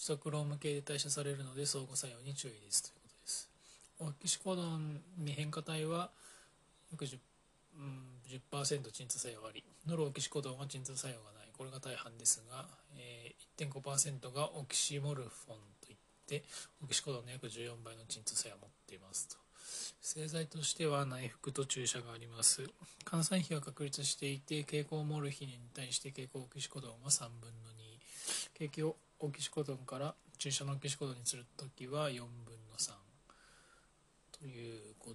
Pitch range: 120-150 Hz